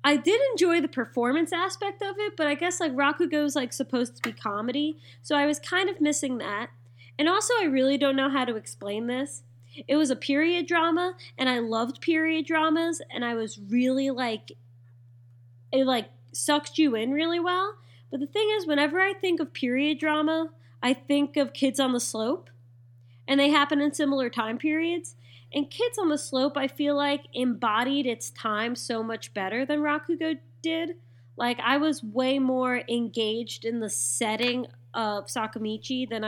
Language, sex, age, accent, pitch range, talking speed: English, female, 20-39, American, 210-295 Hz, 185 wpm